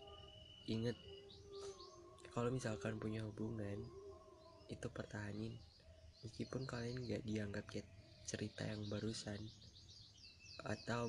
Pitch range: 105-125 Hz